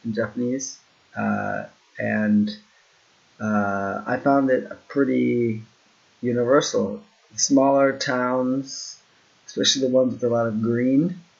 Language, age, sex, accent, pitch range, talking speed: English, 30-49, male, American, 115-175 Hz, 110 wpm